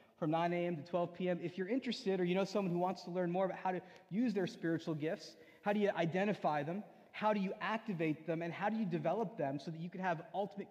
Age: 30-49